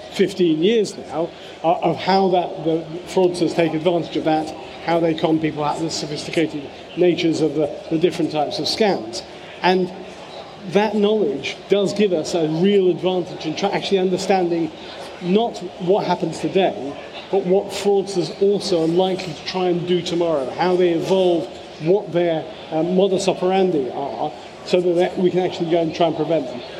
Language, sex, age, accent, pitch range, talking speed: English, male, 40-59, British, 165-190 Hz, 170 wpm